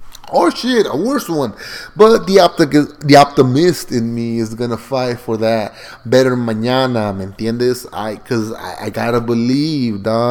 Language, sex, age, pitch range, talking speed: English, male, 30-49, 120-160 Hz, 165 wpm